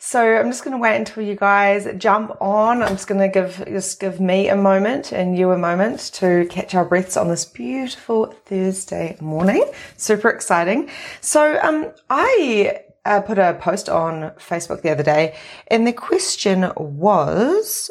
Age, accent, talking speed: 30-49, Australian, 170 wpm